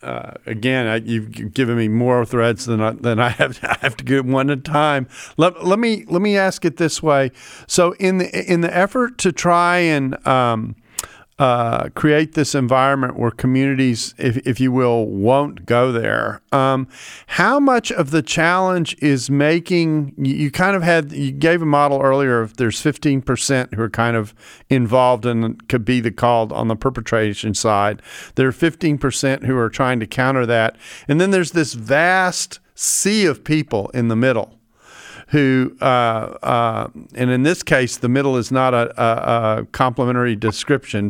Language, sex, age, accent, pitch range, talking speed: English, male, 40-59, American, 120-155 Hz, 175 wpm